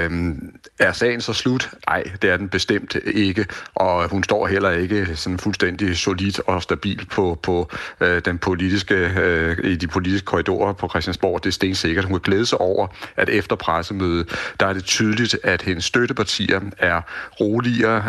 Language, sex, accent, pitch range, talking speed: Danish, male, native, 85-100 Hz, 170 wpm